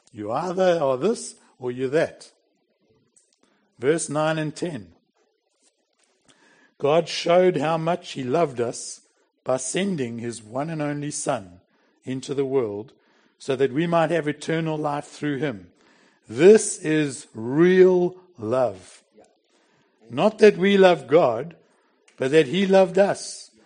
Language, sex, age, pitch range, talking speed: English, male, 60-79, 135-185 Hz, 130 wpm